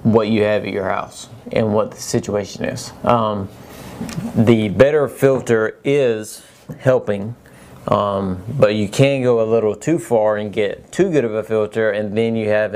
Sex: male